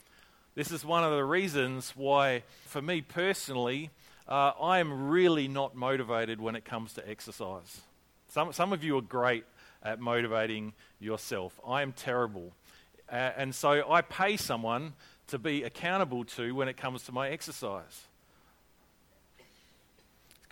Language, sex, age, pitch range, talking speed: English, male, 40-59, 120-155 Hz, 145 wpm